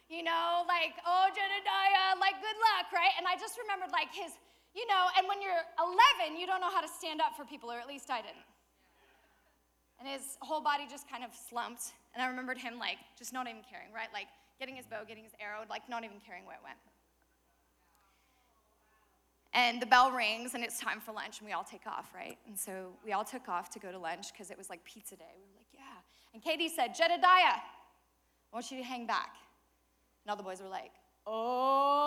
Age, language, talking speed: 10-29, English, 225 wpm